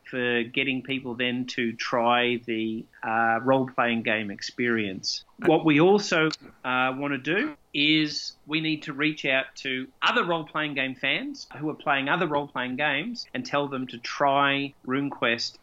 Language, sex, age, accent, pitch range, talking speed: English, male, 30-49, Australian, 115-140 Hz, 155 wpm